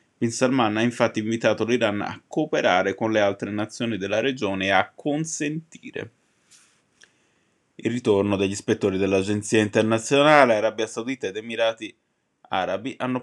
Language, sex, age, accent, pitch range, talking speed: Italian, male, 20-39, native, 110-140 Hz, 130 wpm